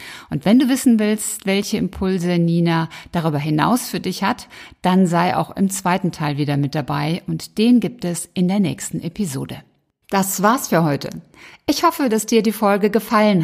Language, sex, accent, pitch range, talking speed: German, female, German, 170-225 Hz, 185 wpm